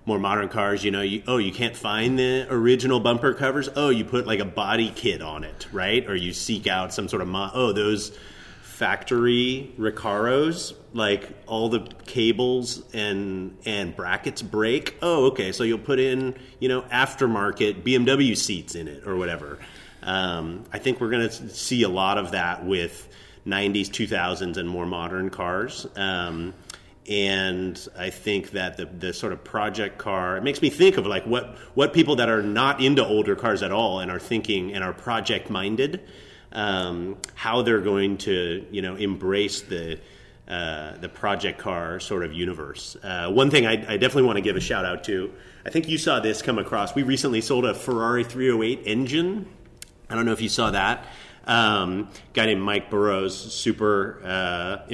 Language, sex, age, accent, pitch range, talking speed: English, male, 30-49, American, 95-125 Hz, 180 wpm